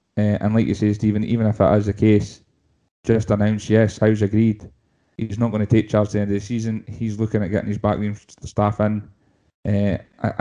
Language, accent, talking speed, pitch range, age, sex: English, British, 220 wpm, 100-110 Hz, 20-39, male